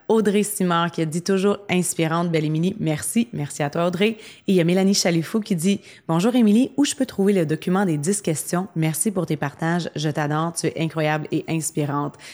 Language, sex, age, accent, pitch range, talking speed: French, female, 30-49, Canadian, 160-200 Hz, 210 wpm